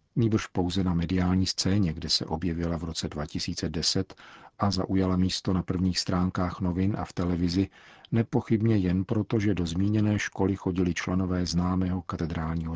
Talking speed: 150 wpm